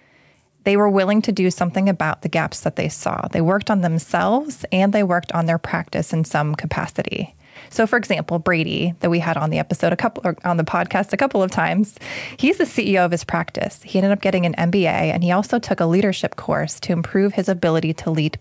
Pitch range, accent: 165-200 Hz, American